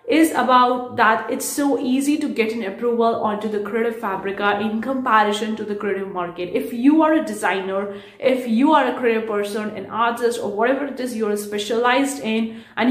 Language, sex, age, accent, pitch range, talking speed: English, female, 30-49, Indian, 215-265 Hz, 190 wpm